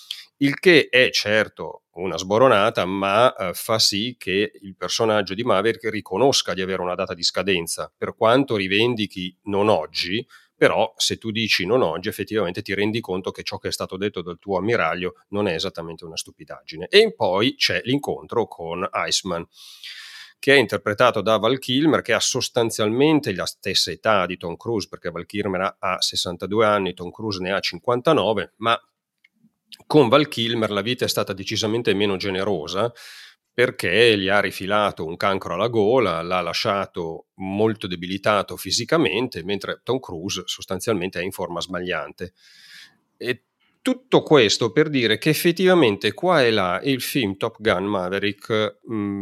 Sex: male